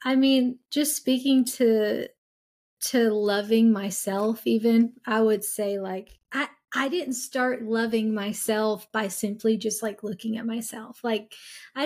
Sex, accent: female, American